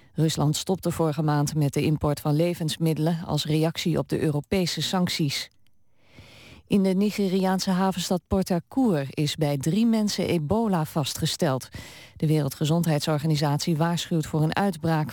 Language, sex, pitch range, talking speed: Dutch, female, 150-180 Hz, 125 wpm